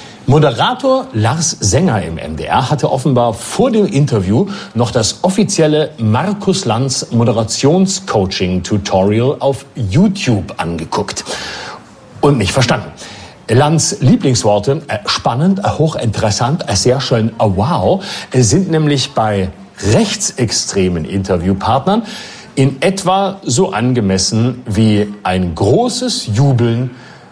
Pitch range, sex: 105-175 Hz, male